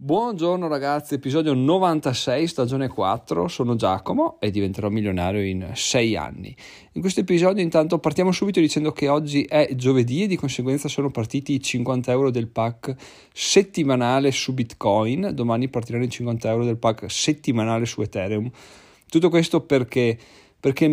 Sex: male